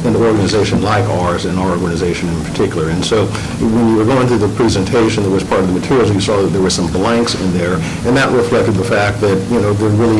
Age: 60-79